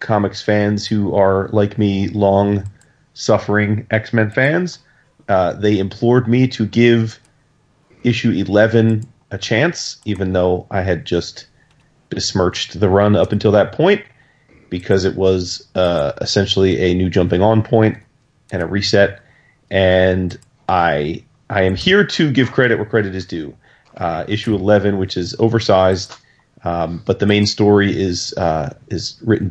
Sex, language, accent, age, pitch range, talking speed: male, English, American, 30-49, 95-120 Hz, 140 wpm